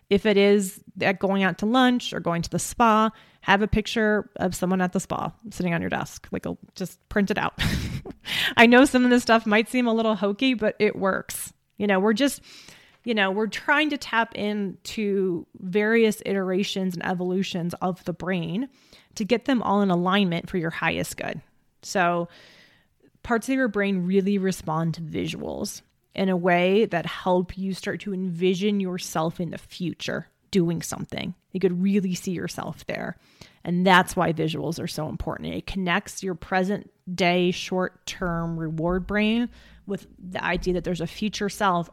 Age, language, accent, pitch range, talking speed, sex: 30-49, English, American, 175-210 Hz, 180 wpm, female